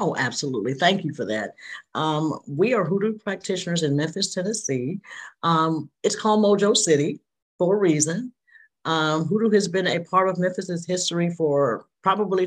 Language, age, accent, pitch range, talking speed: English, 50-69, American, 160-210 Hz, 160 wpm